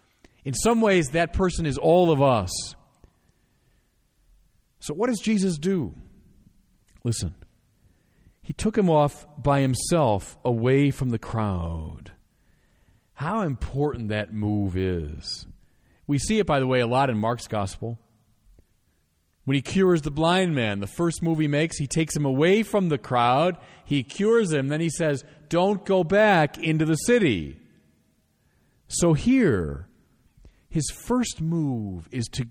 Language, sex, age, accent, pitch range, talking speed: English, male, 40-59, American, 105-160 Hz, 145 wpm